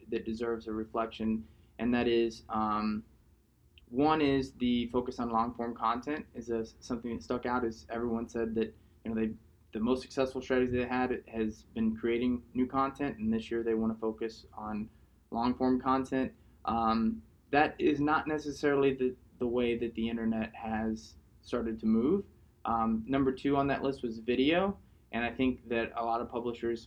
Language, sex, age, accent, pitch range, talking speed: English, male, 20-39, American, 110-120 Hz, 175 wpm